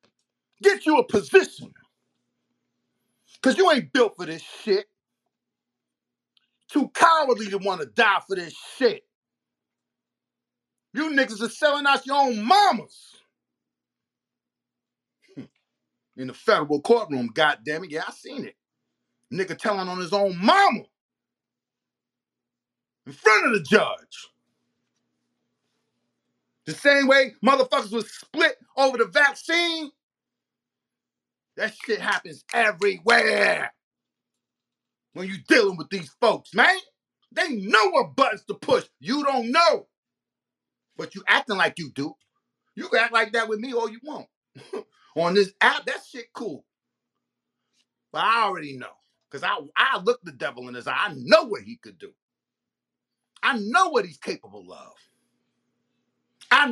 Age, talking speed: 40-59, 135 wpm